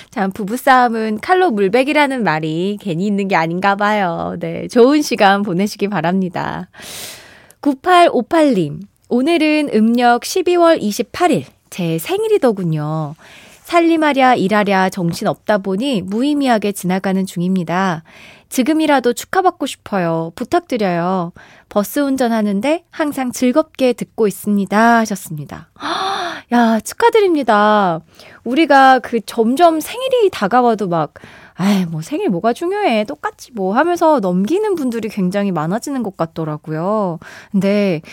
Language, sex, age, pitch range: Korean, female, 20-39, 190-285 Hz